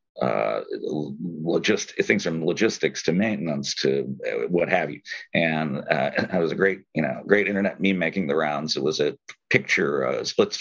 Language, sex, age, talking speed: English, male, 50-69, 175 wpm